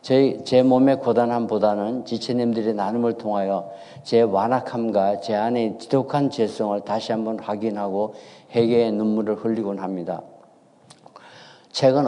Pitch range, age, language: 110-130 Hz, 50-69, Korean